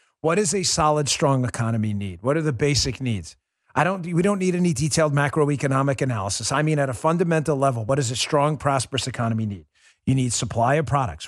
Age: 40-59